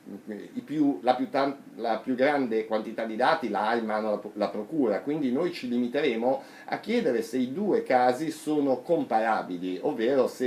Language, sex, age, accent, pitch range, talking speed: Italian, male, 50-69, native, 100-125 Hz, 185 wpm